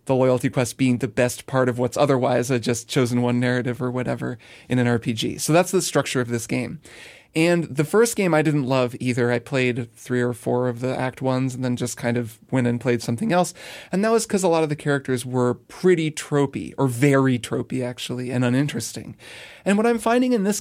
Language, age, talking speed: English, 30-49, 225 wpm